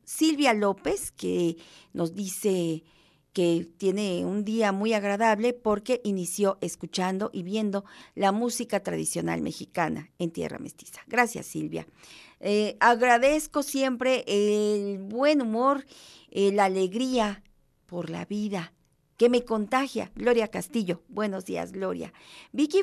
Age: 40-59